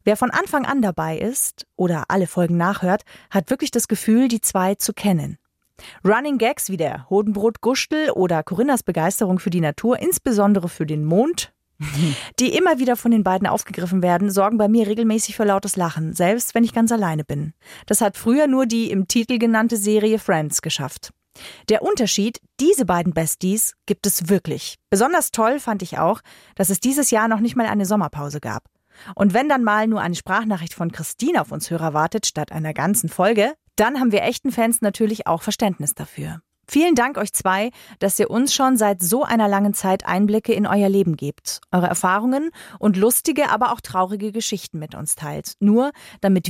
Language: German